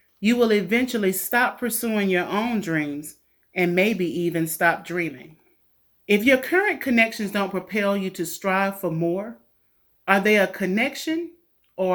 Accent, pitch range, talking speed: American, 165-210 Hz, 145 wpm